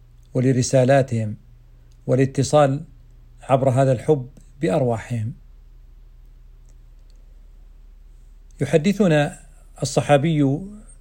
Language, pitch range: Arabic, 110-145 Hz